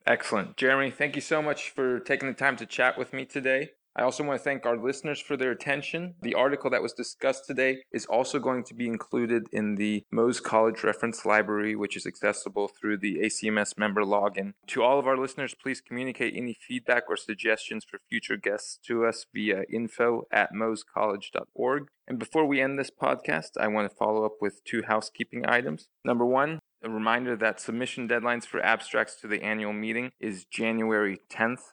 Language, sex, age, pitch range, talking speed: English, male, 20-39, 105-130 Hz, 195 wpm